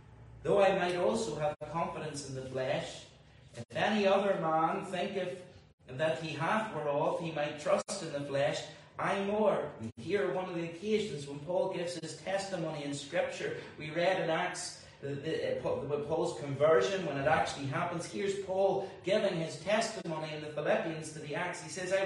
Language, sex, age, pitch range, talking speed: English, male, 40-59, 160-210 Hz, 180 wpm